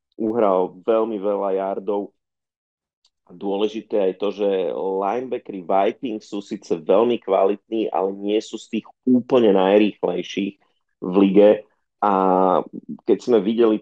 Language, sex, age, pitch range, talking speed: Slovak, male, 30-49, 95-110 Hz, 120 wpm